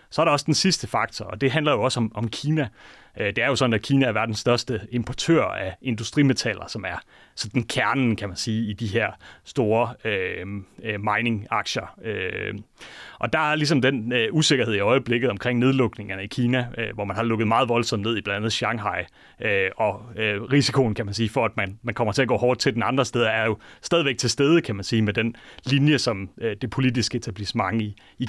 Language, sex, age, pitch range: Danish, male, 30-49, 110-130 Hz